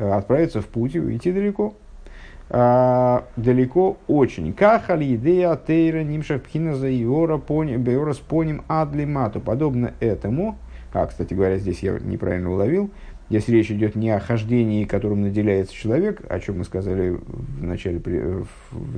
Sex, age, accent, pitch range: male, 50-69, native, 100-135 Hz